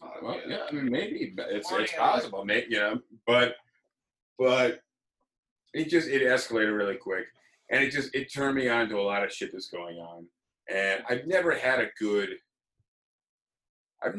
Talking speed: 180 wpm